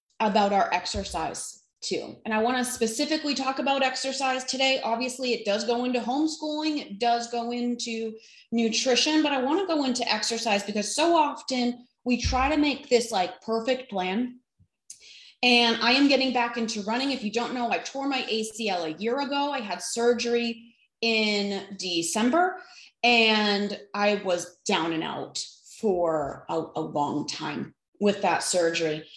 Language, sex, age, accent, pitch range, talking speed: English, female, 30-49, American, 215-265 Hz, 160 wpm